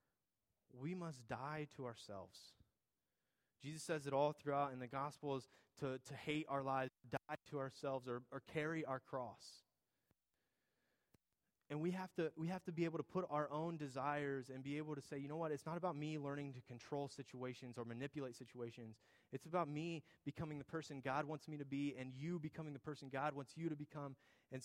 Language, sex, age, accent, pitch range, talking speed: English, male, 20-39, American, 130-155 Hz, 195 wpm